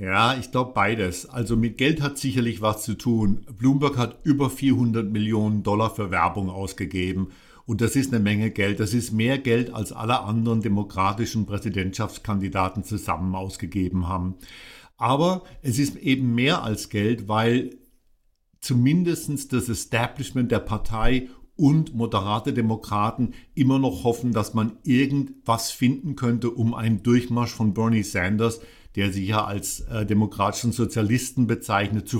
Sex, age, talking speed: male, 60-79, 145 wpm